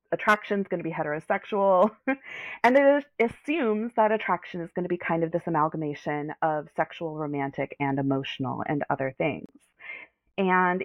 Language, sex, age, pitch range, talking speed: English, female, 30-49, 155-195 Hz, 155 wpm